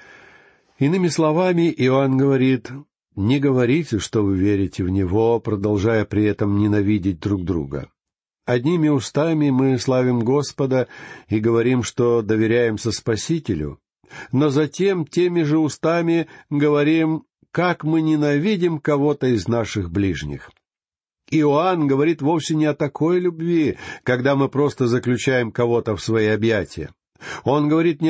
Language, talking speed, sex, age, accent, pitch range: Russian, 125 wpm, male, 60-79, native, 105-150 Hz